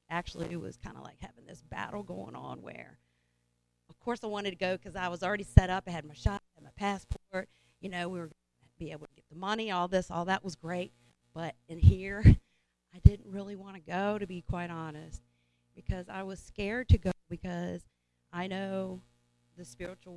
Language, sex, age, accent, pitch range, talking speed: English, female, 40-59, American, 120-180 Hz, 215 wpm